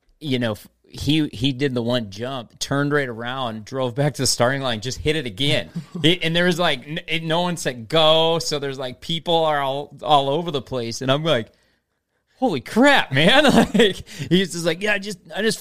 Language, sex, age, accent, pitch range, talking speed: English, male, 30-49, American, 105-135 Hz, 210 wpm